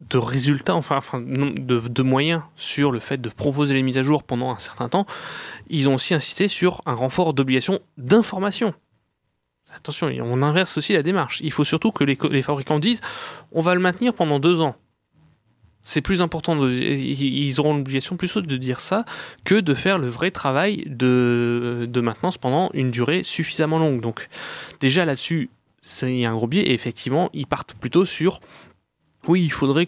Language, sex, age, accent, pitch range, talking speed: French, male, 20-39, French, 125-170 Hz, 185 wpm